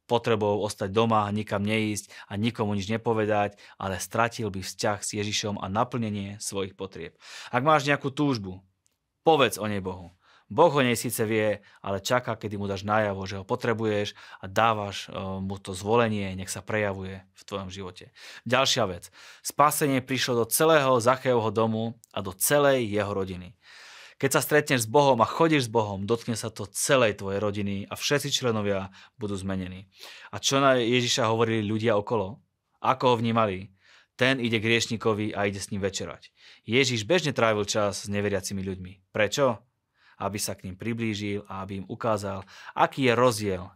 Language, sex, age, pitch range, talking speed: Slovak, male, 20-39, 100-120 Hz, 170 wpm